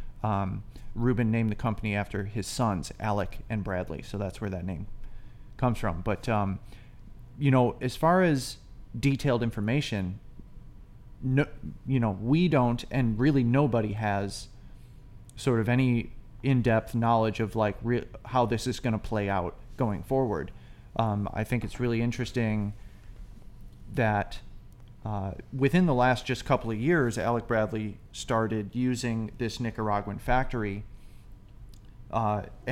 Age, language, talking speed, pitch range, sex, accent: 30-49, English, 140 wpm, 105-125 Hz, male, American